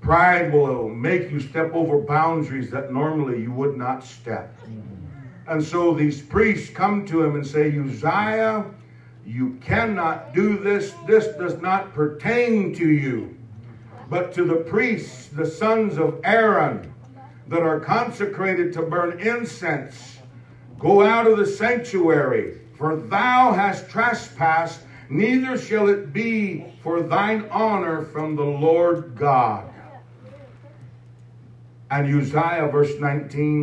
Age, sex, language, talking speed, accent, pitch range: 60-79, male, English, 130 wpm, American, 120-175 Hz